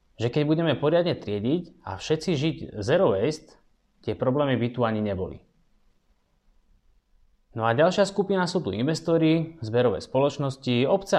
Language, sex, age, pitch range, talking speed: Slovak, male, 20-39, 105-150 Hz, 140 wpm